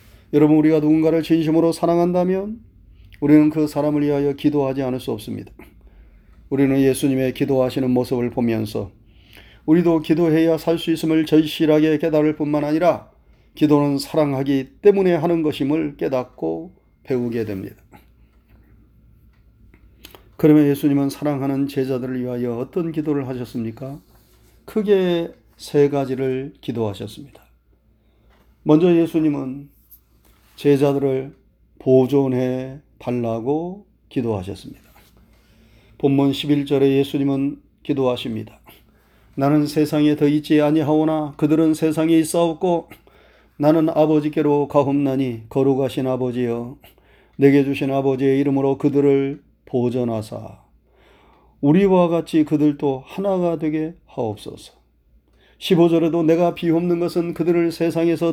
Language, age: Korean, 30-49